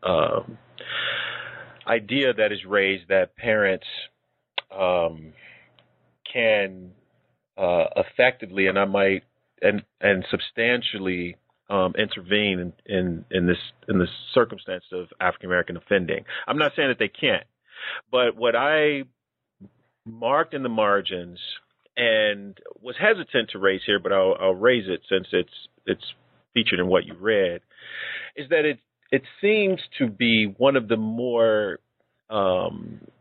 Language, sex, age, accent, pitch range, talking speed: English, male, 40-59, American, 95-125 Hz, 130 wpm